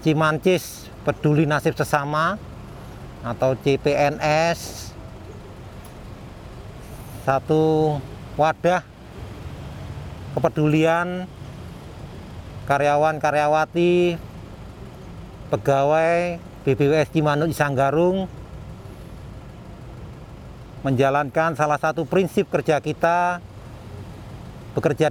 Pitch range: 125-165 Hz